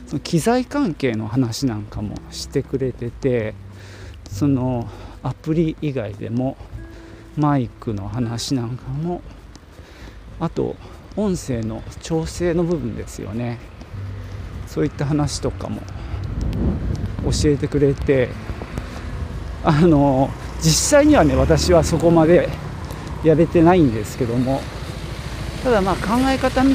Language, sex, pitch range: Japanese, male, 100-150 Hz